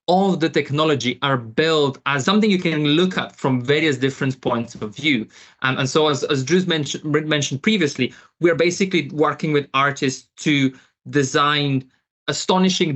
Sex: male